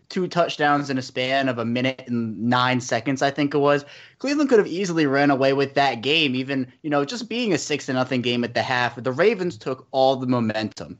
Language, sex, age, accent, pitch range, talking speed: English, male, 20-39, American, 120-155 Hz, 235 wpm